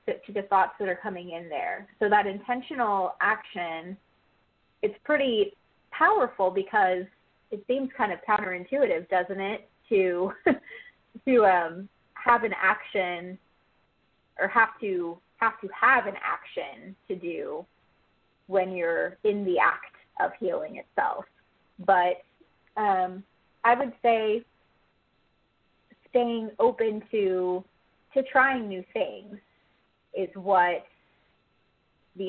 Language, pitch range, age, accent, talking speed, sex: English, 185-235 Hz, 20-39, American, 115 wpm, female